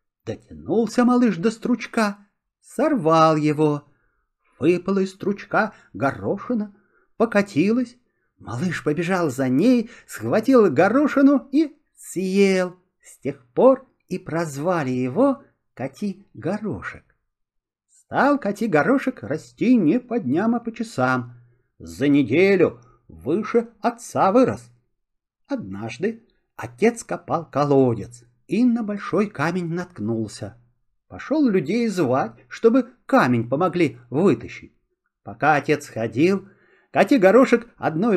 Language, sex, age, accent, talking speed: Russian, male, 50-69, native, 95 wpm